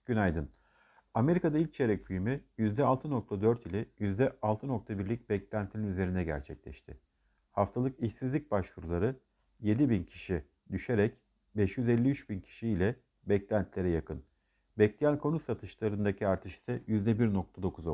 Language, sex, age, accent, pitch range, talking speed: Turkish, male, 50-69, native, 100-130 Hz, 100 wpm